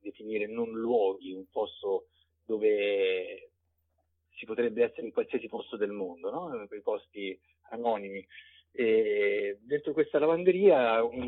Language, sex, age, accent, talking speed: Italian, male, 50-69, native, 120 wpm